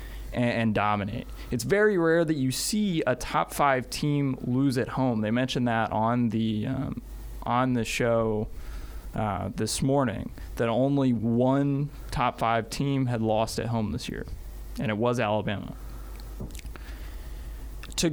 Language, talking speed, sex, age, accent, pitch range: English, 145 wpm, male, 20-39, American, 110-145 Hz